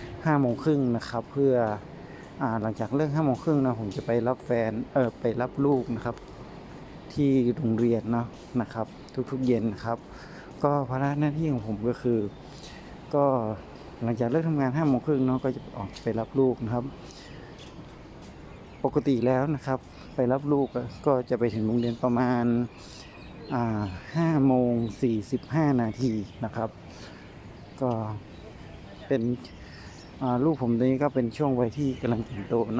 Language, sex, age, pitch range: Thai, male, 60-79, 115-135 Hz